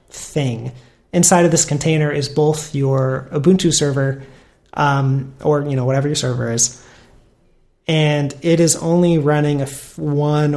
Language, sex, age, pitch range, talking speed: English, male, 30-49, 130-150 Hz, 150 wpm